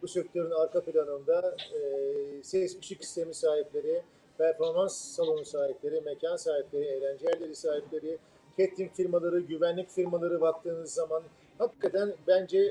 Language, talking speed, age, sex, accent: Turkish, 115 wpm, 50-69, male, native